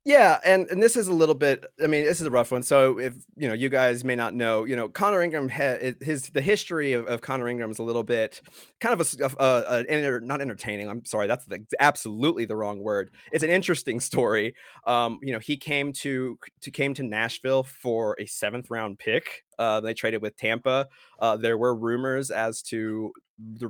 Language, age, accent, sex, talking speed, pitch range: English, 30-49, American, male, 220 wpm, 110-135 Hz